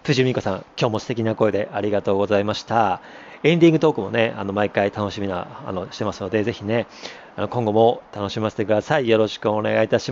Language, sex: Japanese, male